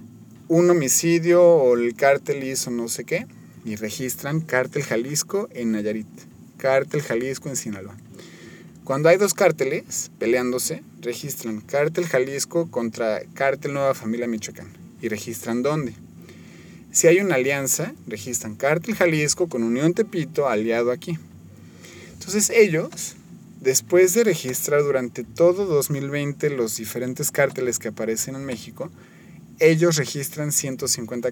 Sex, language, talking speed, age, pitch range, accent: male, Spanish, 125 wpm, 30-49, 120-160 Hz, Mexican